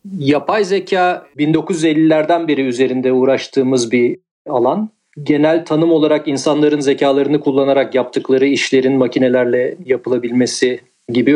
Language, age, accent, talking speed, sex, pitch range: Turkish, 40-59, native, 100 wpm, male, 130-165 Hz